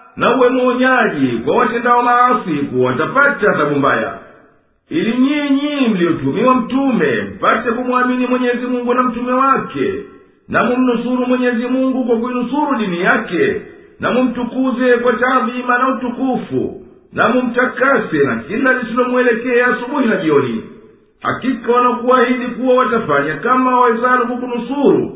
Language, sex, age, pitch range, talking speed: Swahili, male, 50-69, 235-255 Hz, 110 wpm